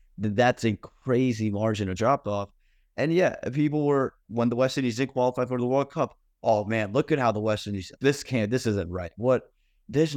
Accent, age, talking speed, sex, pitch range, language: American, 30-49, 210 wpm, male, 105-130 Hz, English